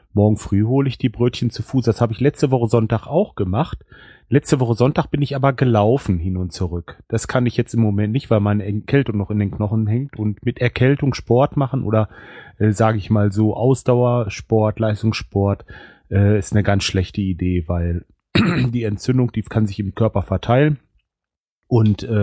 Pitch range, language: 105-130 Hz, German